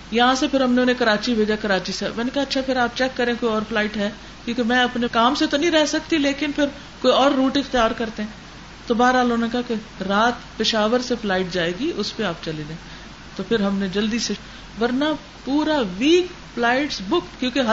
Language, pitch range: Urdu, 220-295 Hz